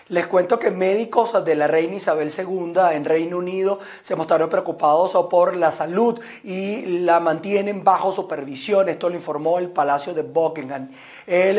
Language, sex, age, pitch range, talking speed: Spanish, male, 30-49, 155-185 Hz, 160 wpm